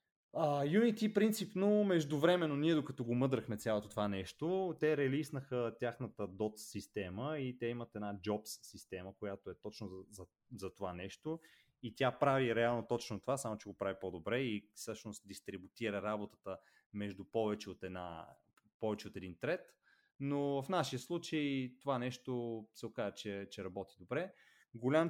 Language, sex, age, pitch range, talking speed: Bulgarian, male, 20-39, 100-130 Hz, 160 wpm